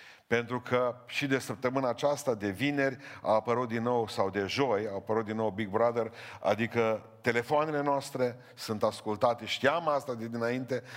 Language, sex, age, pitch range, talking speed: Romanian, male, 50-69, 110-140 Hz, 165 wpm